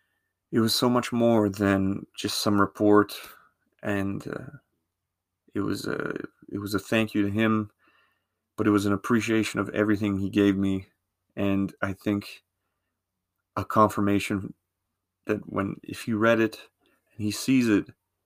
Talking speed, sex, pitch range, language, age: 150 wpm, male, 100-110 Hz, English, 30-49